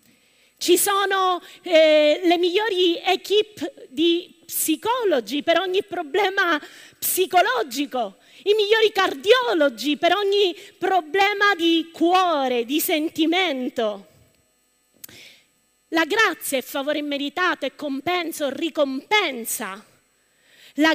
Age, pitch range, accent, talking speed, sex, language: 30-49, 285-400 Hz, native, 90 wpm, female, Italian